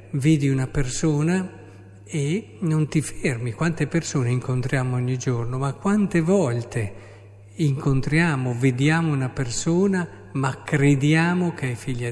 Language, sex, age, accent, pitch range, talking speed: Italian, male, 50-69, native, 105-145 Hz, 120 wpm